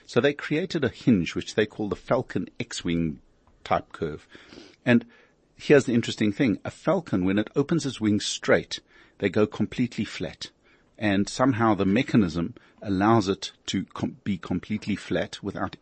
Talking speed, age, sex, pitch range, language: 155 wpm, 50-69, male, 90-115 Hz, English